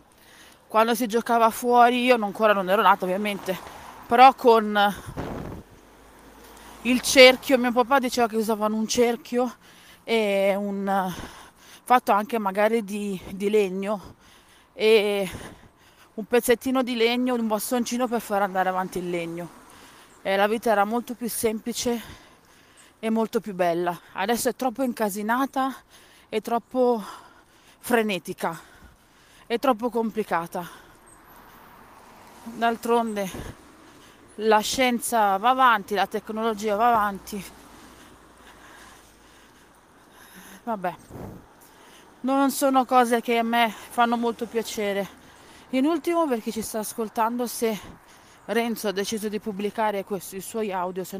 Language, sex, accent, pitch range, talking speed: Italian, female, native, 200-240 Hz, 115 wpm